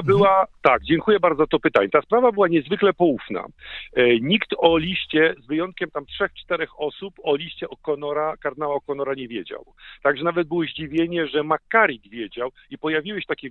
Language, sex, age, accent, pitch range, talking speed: Polish, male, 50-69, native, 145-180 Hz, 180 wpm